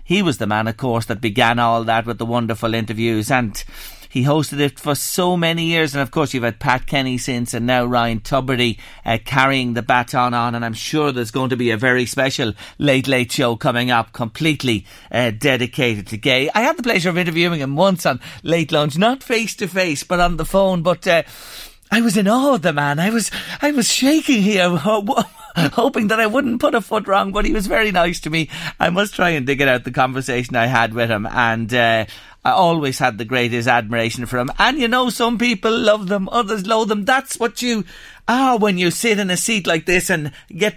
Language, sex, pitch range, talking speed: English, male, 115-190 Hz, 225 wpm